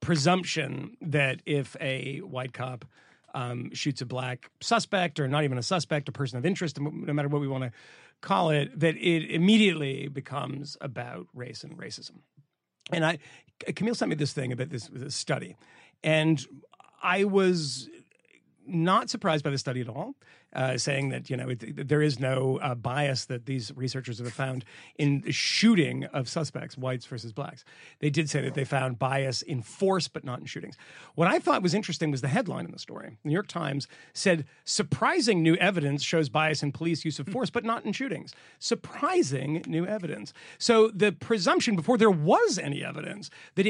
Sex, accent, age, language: male, American, 40-59, English